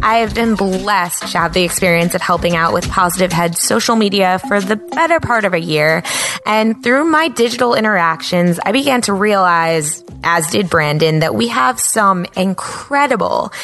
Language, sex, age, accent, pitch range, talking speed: English, female, 20-39, American, 170-230 Hz, 175 wpm